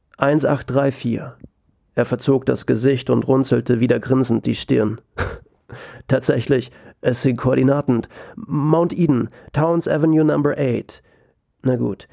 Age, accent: 30-49, German